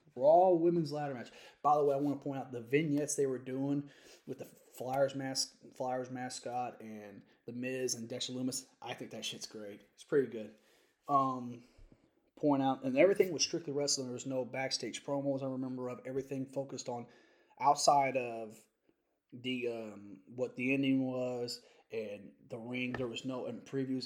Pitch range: 120-135 Hz